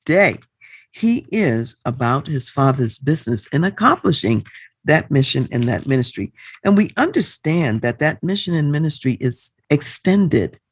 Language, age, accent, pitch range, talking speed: English, 50-69, American, 125-180 Hz, 135 wpm